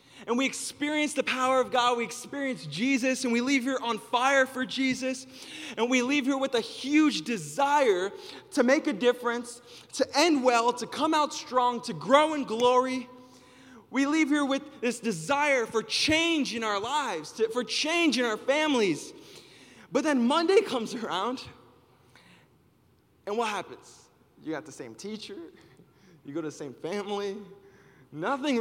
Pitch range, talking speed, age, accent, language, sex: 220-290 Hz, 160 wpm, 20-39, American, English, male